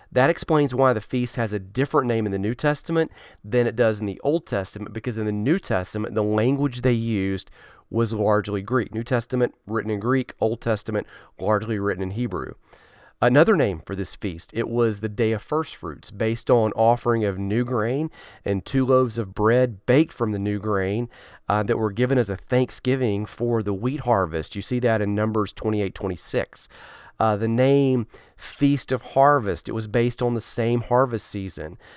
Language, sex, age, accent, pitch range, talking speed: English, male, 40-59, American, 105-130 Hz, 190 wpm